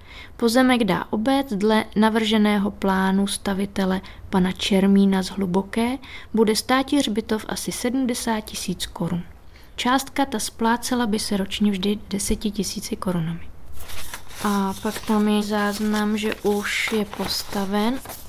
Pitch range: 195-230 Hz